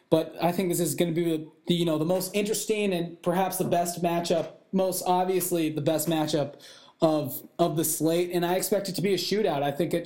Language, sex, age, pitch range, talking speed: English, male, 20-39, 145-175 Hz, 235 wpm